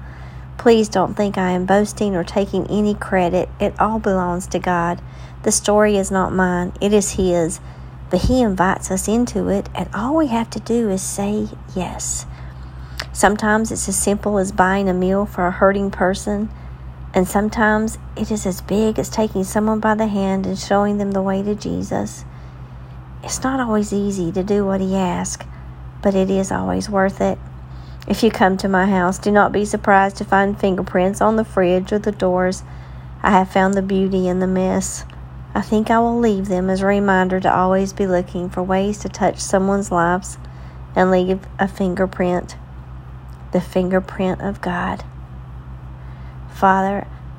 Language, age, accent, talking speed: English, 50-69, American, 175 wpm